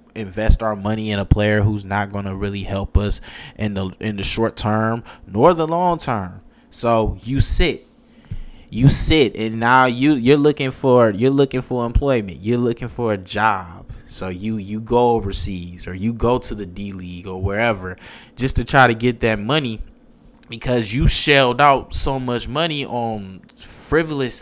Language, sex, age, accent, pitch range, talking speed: English, male, 20-39, American, 105-135 Hz, 180 wpm